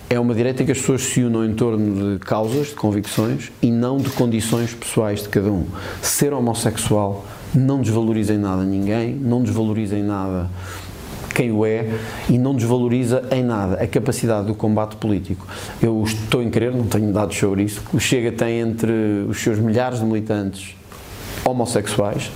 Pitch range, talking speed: 105-125 Hz, 175 wpm